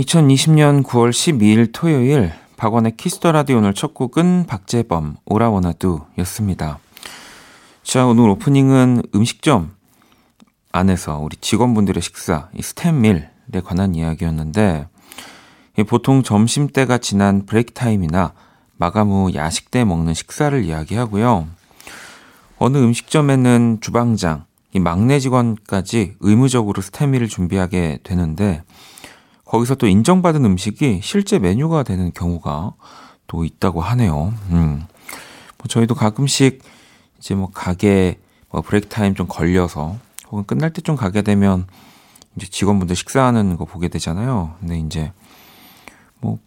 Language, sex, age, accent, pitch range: Korean, male, 40-59, native, 90-120 Hz